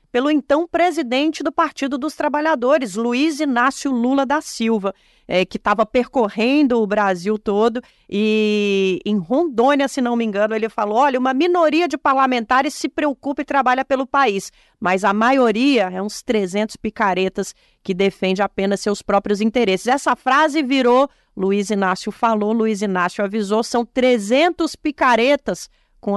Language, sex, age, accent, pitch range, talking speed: Portuguese, female, 40-59, Brazilian, 210-275 Hz, 145 wpm